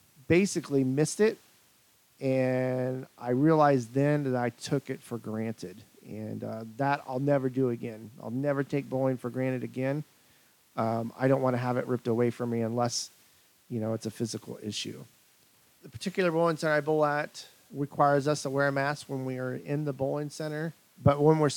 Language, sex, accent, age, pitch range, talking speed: English, male, American, 40-59, 125-150 Hz, 190 wpm